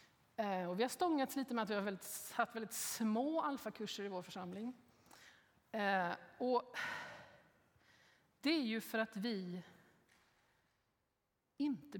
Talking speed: 130 wpm